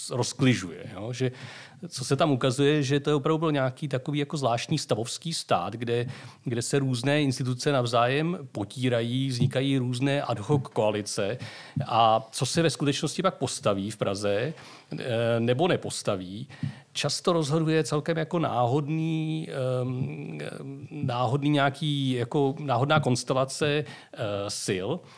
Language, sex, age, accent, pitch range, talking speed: Czech, male, 40-59, native, 125-150 Hz, 125 wpm